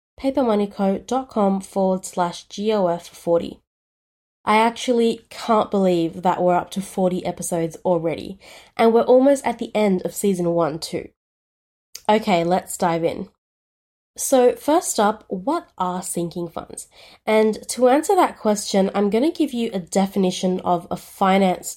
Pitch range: 180-220 Hz